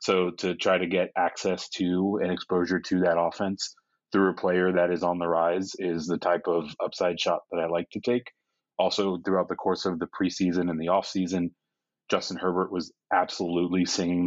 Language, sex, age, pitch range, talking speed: English, male, 30-49, 90-100 Hz, 195 wpm